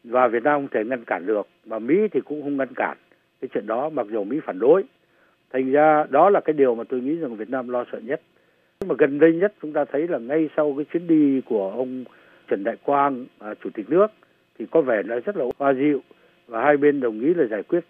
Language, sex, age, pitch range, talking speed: Vietnamese, male, 60-79, 120-165 Hz, 255 wpm